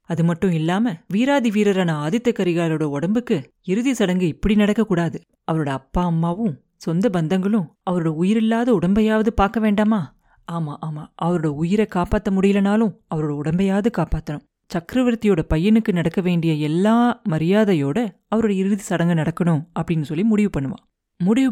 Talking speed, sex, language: 130 wpm, female, Tamil